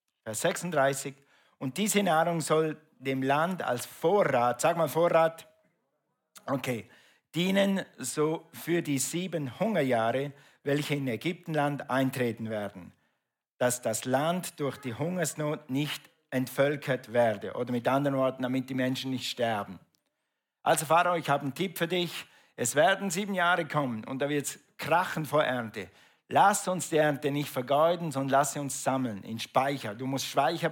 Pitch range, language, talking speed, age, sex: 125-155 Hz, German, 150 wpm, 50-69, male